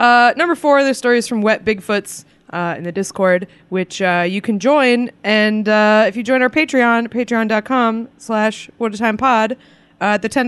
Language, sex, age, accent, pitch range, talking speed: English, female, 20-39, American, 185-260 Hz, 165 wpm